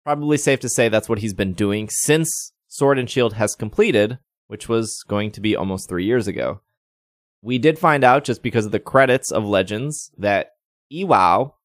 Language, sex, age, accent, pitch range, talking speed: English, male, 20-39, American, 95-130 Hz, 190 wpm